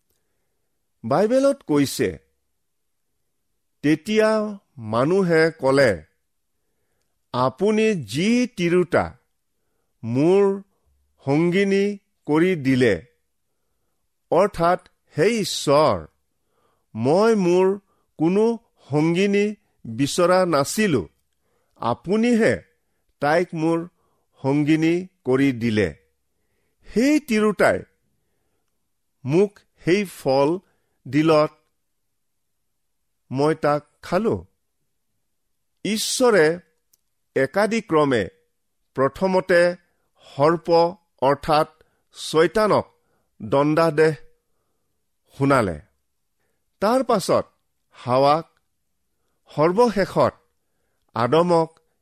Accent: Indian